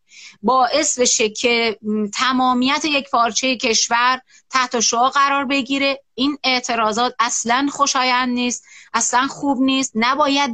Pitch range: 225-275 Hz